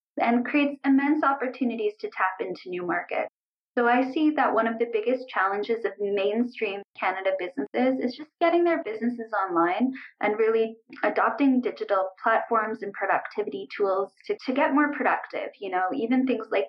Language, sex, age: English, female, 10-29